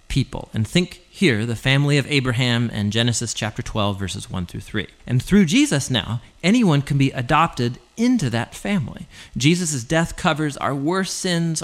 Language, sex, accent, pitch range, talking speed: English, male, American, 115-165 Hz, 170 wpm